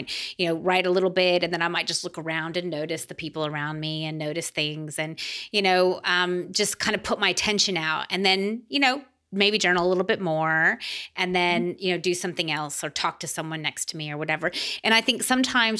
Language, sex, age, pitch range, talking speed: English, female, 30-49, 165-215 Hz, 240 wpm